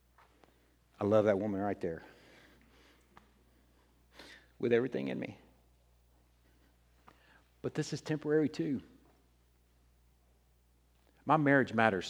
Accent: American